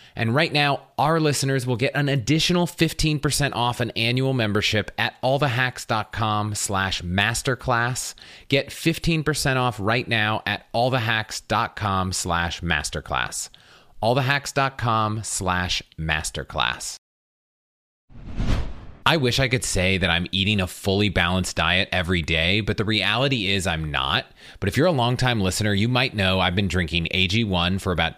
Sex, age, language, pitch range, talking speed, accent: male, 30-49, English, 95-125 Hz, 140 wpm, American